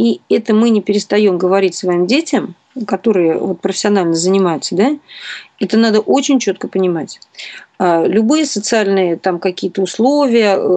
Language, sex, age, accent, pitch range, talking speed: Russian, female, 40-59, native, 195-245 Hz, 125 wpm